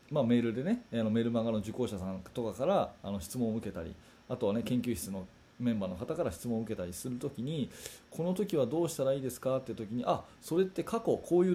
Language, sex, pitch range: Japanese, male, 115-180 Hz